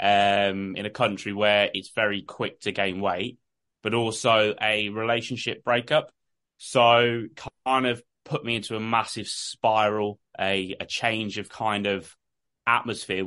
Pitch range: 100-125 Hz